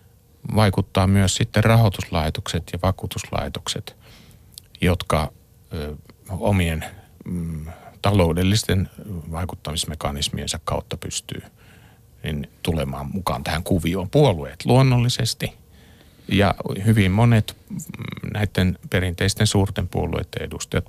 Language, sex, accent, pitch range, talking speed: Finnish, male, native, 85-110 Hz, 75 wpm